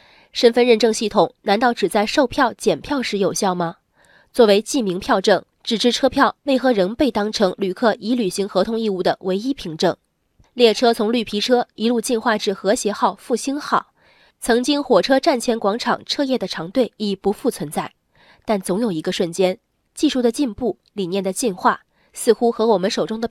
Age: 20-39